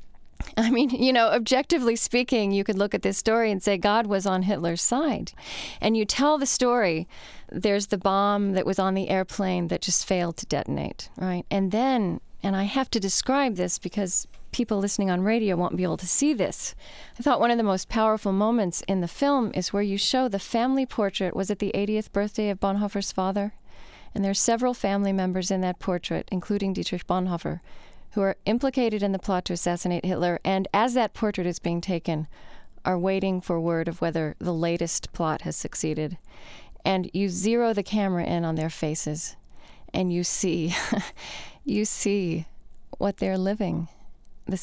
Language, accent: English, American